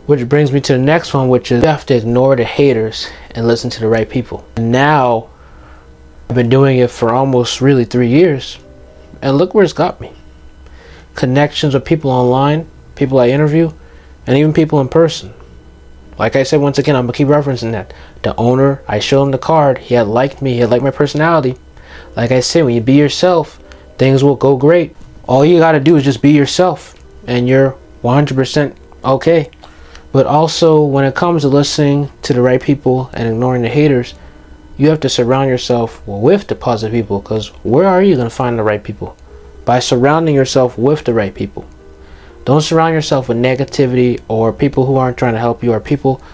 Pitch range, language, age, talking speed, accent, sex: 115-145 Hz, English, 20-39, 200 wpm, American, male